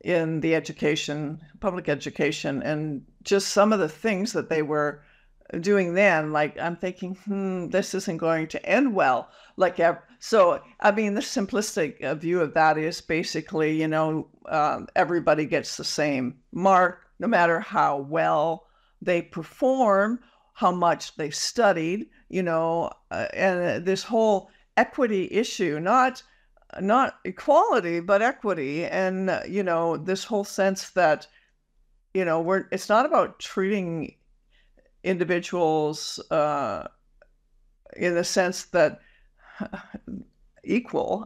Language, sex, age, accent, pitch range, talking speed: English, female, 60-79, American, 165-210 Hz, 130 wpm